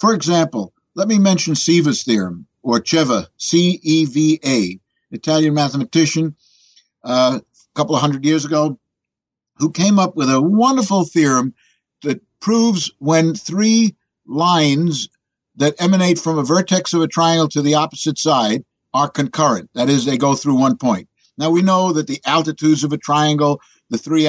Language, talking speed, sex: English, 155 wpm, male